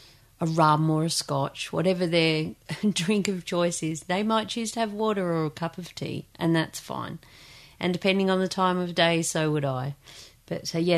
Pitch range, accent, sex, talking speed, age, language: 160-210 Hz, Australian, female, 210 wpm, 40-59, English